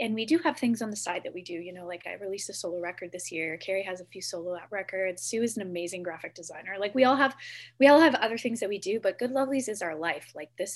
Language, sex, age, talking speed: English, female, 20-39, 295 wpm